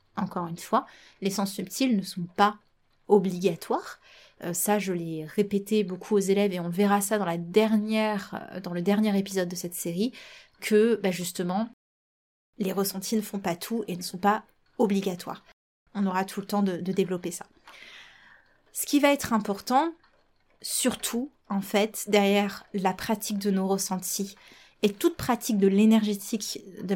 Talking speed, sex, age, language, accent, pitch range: 165 wpm, female, 20-39, French, French, 185-215 Hz